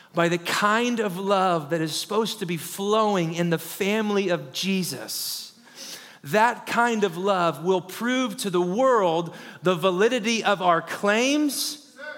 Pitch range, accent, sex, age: 175-220 Hz, American, male, 30-49